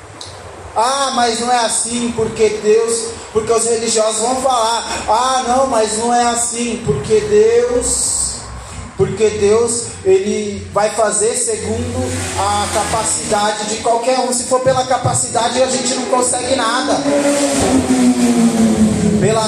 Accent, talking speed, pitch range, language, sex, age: Brazilian, 125 wpm, 175-235 Hz, Portuguese, male, 20-39